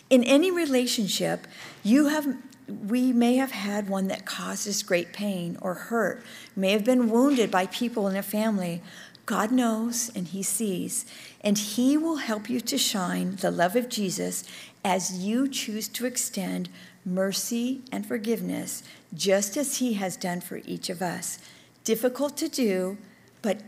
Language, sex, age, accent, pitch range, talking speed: English, female, 50-69, American, 190-245 Hz, 155 wpm